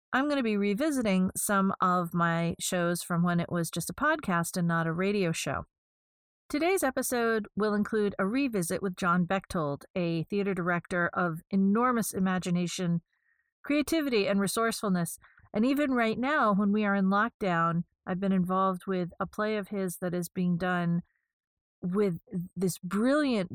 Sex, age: female, 40-59